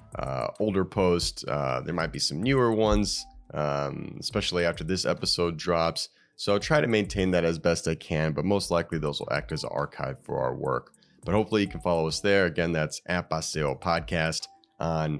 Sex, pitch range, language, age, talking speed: male, 80-100 Hz, English, 30-49, 195 wpm